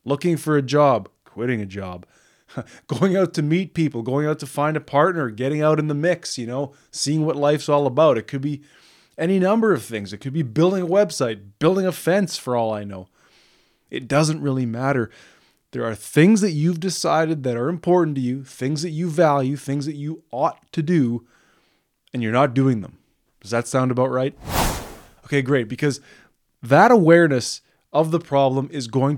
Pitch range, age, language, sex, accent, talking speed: 130-160 Hz, 20-39, English, male, American, 195 wpm